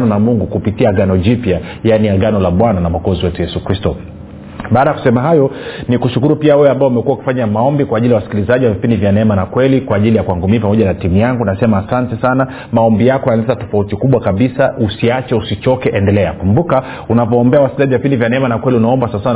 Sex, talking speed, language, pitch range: male, 210 wpm, Swahili, 105-130 Hz